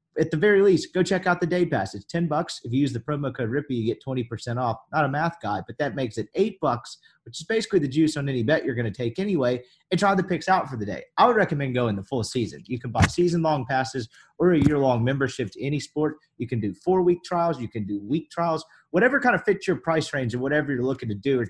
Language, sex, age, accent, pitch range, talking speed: English, male, 30-49, American, 120-155 Hz, 275 wpm